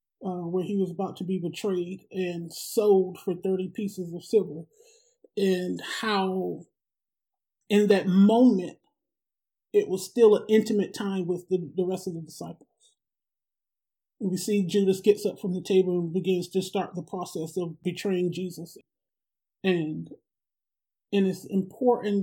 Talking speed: 150 wpm